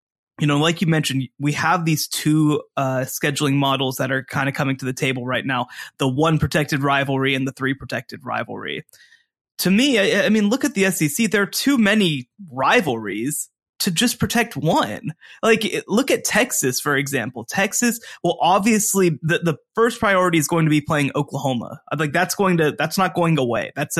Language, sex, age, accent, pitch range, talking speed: English, male, 20-39, American, 150-210 Hz, 195 wpm